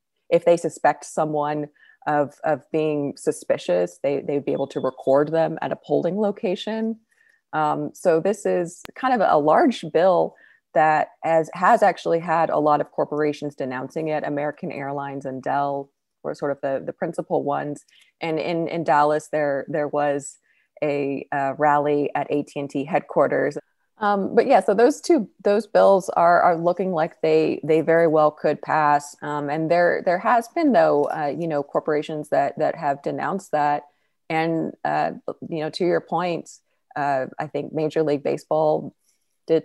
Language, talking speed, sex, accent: English, 170 wpm, female, American